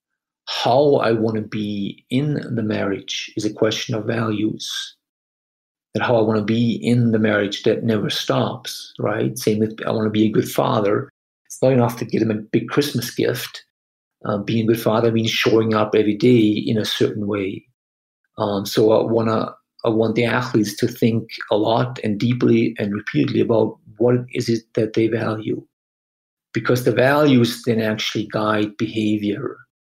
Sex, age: male, 50-69